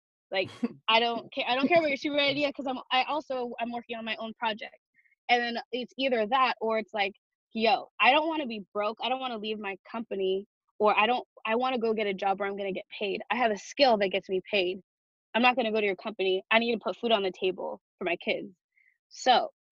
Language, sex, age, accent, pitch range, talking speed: English, female, 20-39, American, 195-240 Hz, 250 wpm